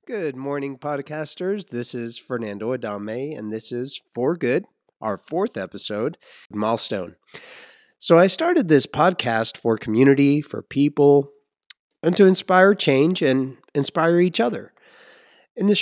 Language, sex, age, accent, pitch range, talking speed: English, male, 30-49, American, 120-160 Hz, 135 wpm